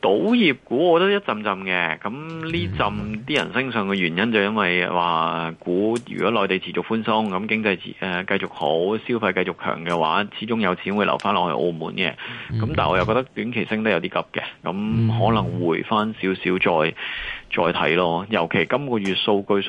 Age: 30-49